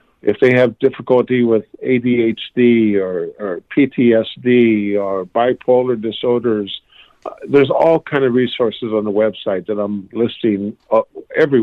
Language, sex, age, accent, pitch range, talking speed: English, male, 50-69, American, 105-130 Hz, 135 wpm